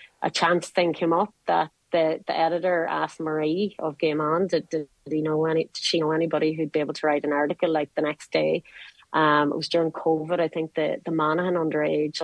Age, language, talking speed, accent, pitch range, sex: 30-49, English, 225 wpm, Irish, 155-180 Hz, female